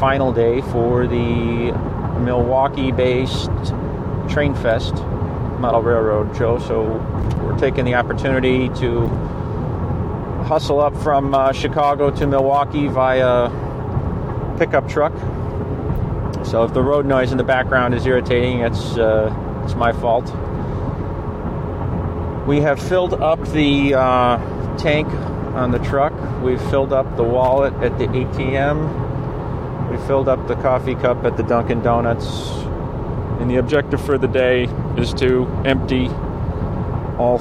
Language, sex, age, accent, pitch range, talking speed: English, male, 40-59, American, 115-135 Hz, 130 wpm